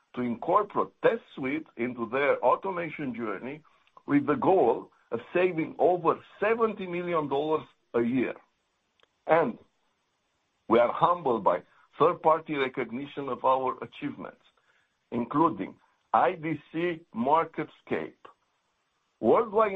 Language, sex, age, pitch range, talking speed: English, male, 60-79, 130-185 Hz, 95 wpm